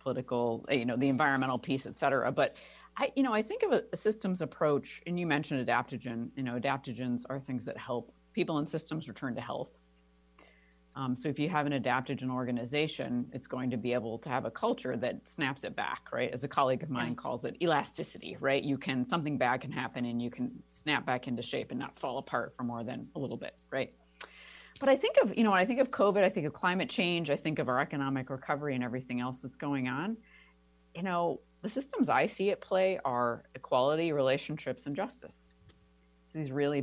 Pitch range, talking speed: 125-155 Hz, 220 wpm